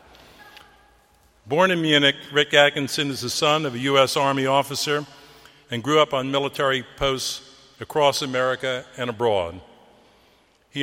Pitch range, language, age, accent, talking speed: 120-145 Hz, English, 50-69, American, 135 wpm